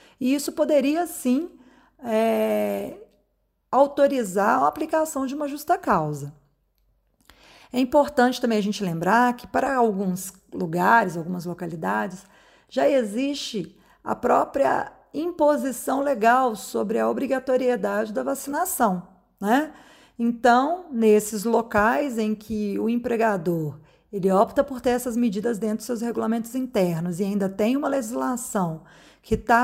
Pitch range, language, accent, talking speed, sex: 205-275 Hz, Portuguese, Brazilian, 120 wpm, female